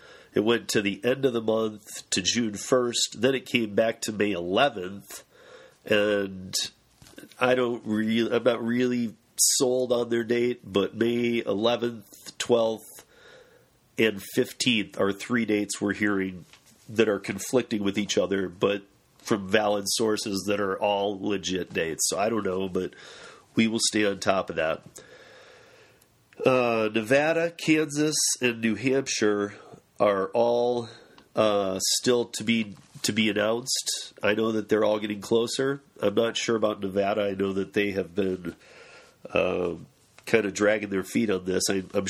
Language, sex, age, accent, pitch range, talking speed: English, male, 40-59, American, 100-120 Hz, 150 wpm